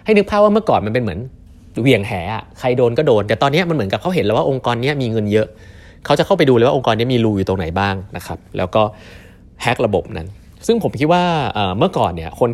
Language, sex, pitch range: Thai, male, 95-125 Hz